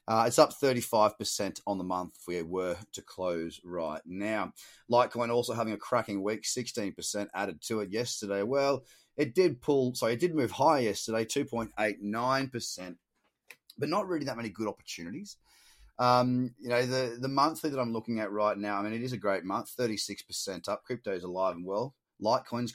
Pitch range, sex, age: 105-135 Hz, male, 30-49